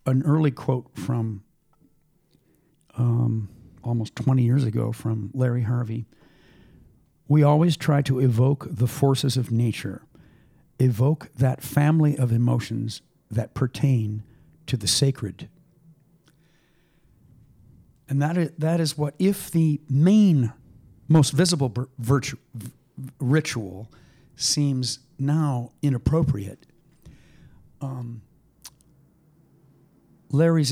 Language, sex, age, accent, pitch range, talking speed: English, male, 50-69, American, 115-150 Hz, 95 wpm